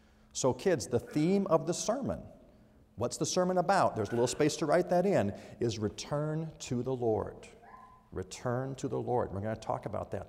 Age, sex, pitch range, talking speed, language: 50-69, male, 110-170 Hz, 200 wpm, English